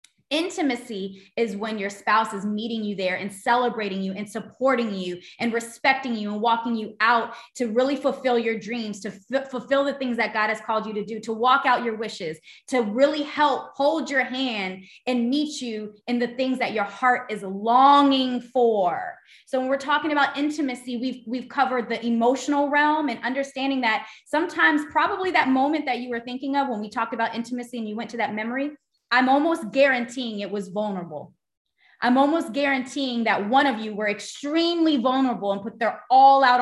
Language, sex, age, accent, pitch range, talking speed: English, female, 20-39, American, 220-275 Hz, 195 wpm